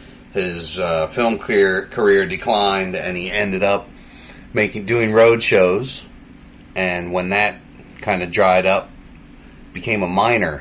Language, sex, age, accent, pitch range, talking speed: English, male, 30-49, American, 90-120 Hz, 135 wpm